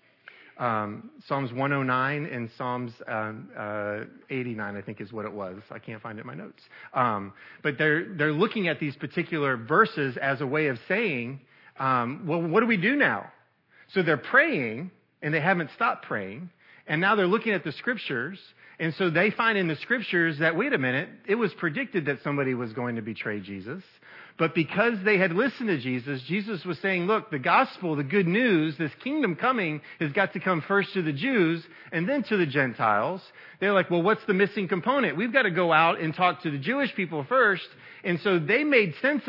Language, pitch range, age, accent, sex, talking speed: English, 135-200 Hz, 40-59, American, male, 205 wpm